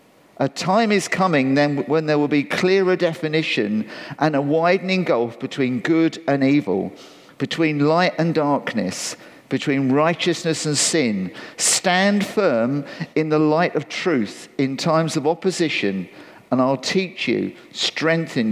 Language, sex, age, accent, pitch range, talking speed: English, male, 50-69, British, 135-170 Hz, 140 wpm